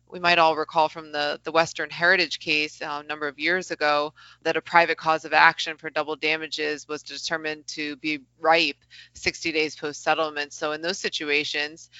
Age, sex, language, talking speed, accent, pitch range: 20-39, female, English, 185 wpm, American, 150-165 Hz